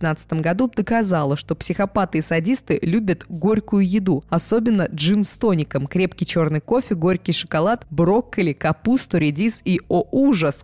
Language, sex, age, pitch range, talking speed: Russian, female, 20-39, 170-220 Hz, 130 wpm